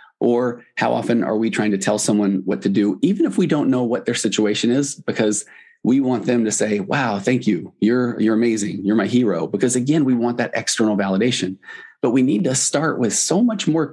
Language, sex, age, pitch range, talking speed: English, male, 30-49, 100-120 Hz, 225 wpm